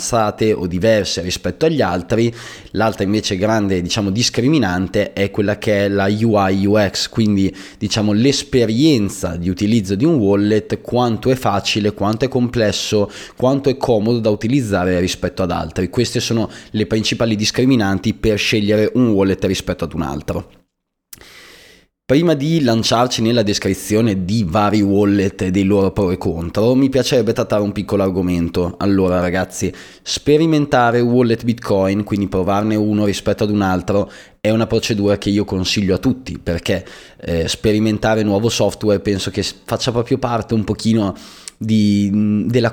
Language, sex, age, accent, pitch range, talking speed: Italian, male, 20-39, native, 95-110 Hz, 150 wpm